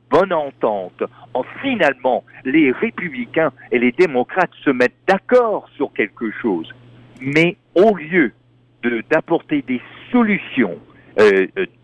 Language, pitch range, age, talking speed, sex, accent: French, 130-200 Hz, 50-69, 110 wpm, male, French